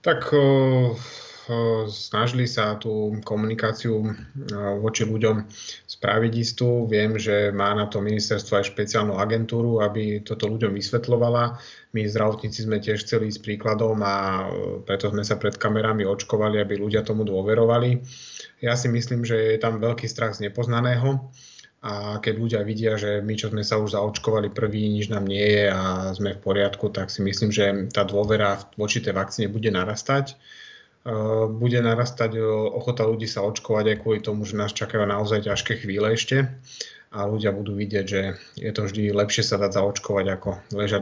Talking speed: 165 wpm